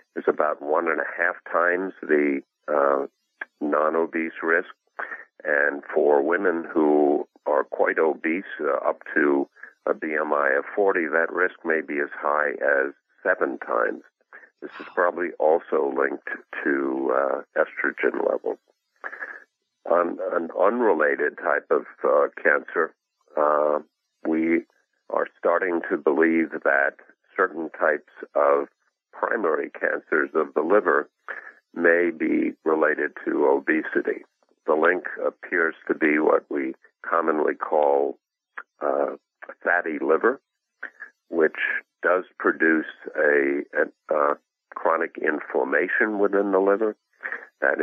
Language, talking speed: English, 120 wpm